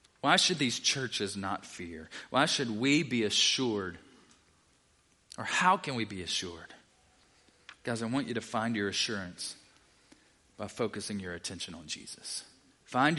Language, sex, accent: English, male, American